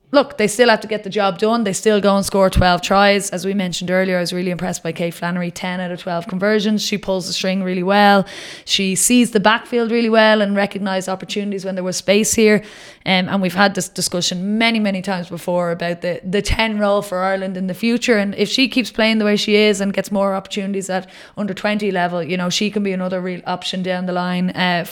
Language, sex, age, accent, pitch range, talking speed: English, female, 20-39, Irish, 180-210 Hz, 240 wpm